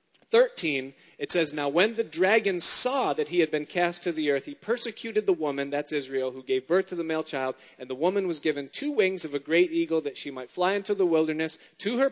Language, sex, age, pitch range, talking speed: English, male, 40-59, 145-210 Hz, 245 wpm